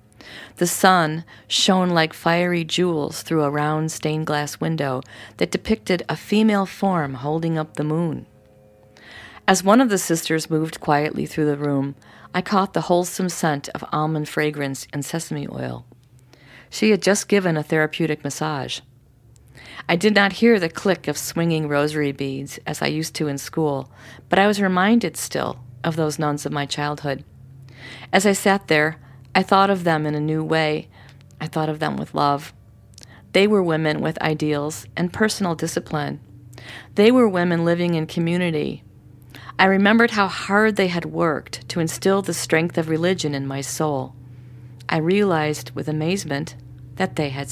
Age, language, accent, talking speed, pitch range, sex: 40-59, English, American, 165 wpm, 135-175 Hz, female